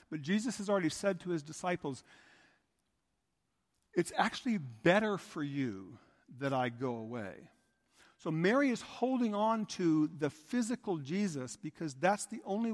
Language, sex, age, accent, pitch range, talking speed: English, male, 50-69, American, 160-215 Hz, 140 wpm